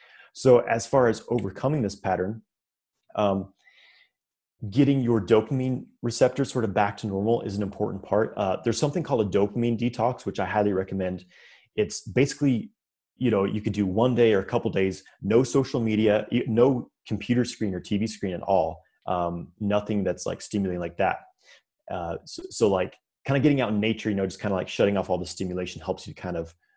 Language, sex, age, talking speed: English, male, 30-49, 200 wpm